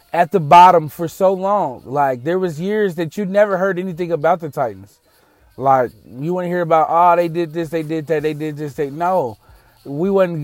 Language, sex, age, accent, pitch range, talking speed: English, male, 20-39, American, 110-160 Hz, 215 wpm